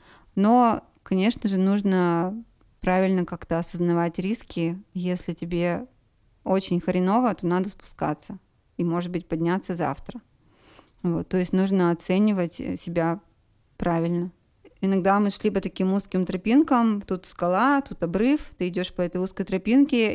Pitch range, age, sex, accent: 180-215 Hz, 20-39, female, native